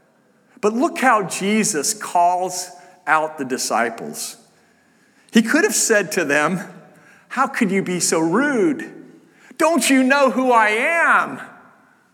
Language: English